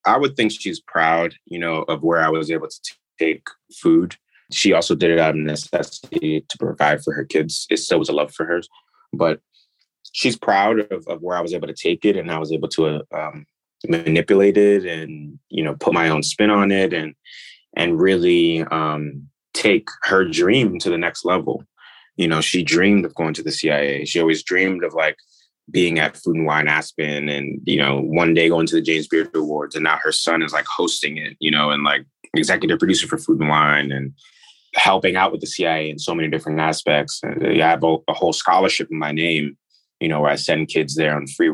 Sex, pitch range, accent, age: male, 75-85 Hz, American, 20-39